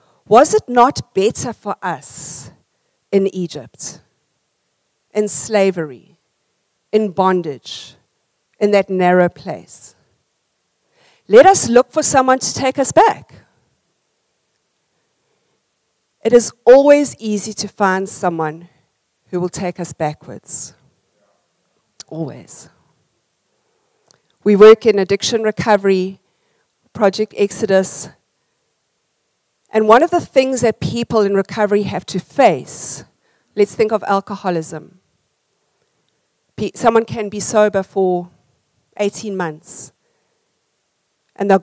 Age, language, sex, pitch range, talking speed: 50-69, English, female, 180-220 Hz, 100 wpm